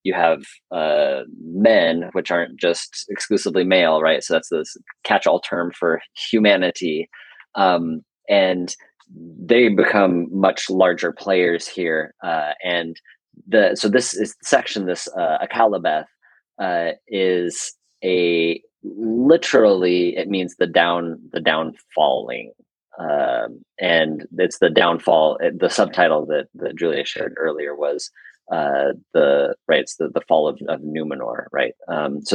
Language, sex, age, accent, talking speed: English, male, 30-49, American, 130 wpm